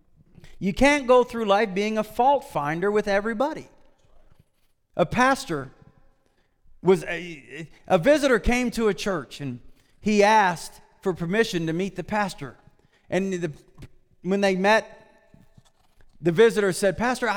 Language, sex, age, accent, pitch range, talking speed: English, male, 40-59, American, 150-205 Hz, 130 wpm